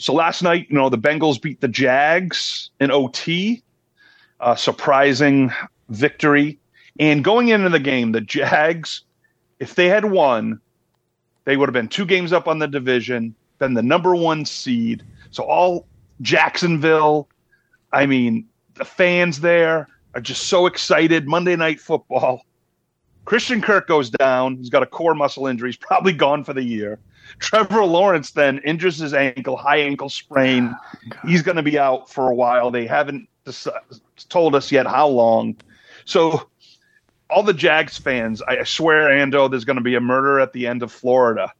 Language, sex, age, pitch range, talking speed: English, male, 40-59, 125-160 Hz, 165 wpm